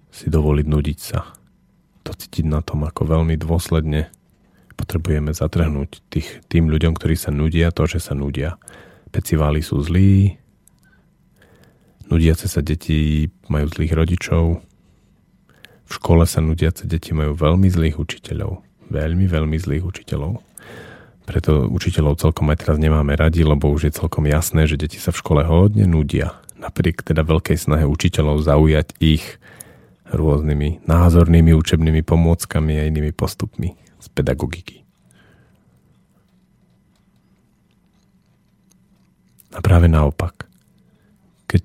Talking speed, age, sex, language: 120 wpm, 40-59, male, Slovak